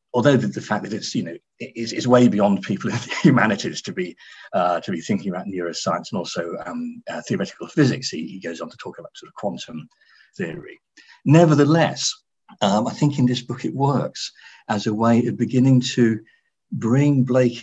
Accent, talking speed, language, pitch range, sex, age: British, 190 wpm, English, 110-145 Hz, male, 50-69